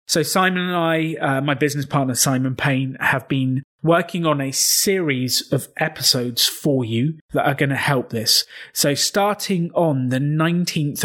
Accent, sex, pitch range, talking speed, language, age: British, male, 130-160 Hz, 170 wpm, English, 30-49